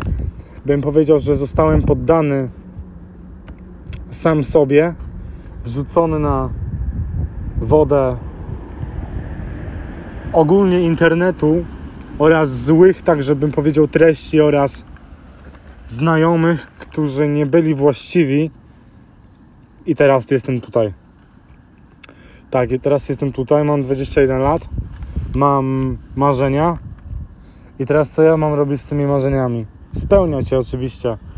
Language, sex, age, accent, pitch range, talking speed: Polish, male, 30-49, native, 105-150 Hz, 95 wpm